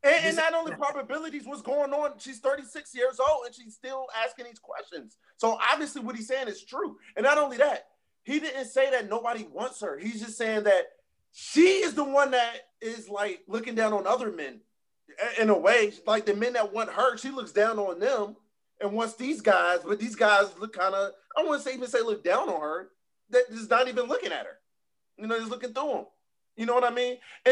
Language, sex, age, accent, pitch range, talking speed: English, male, 20-39, American, 205-285 Hz, 225 wpm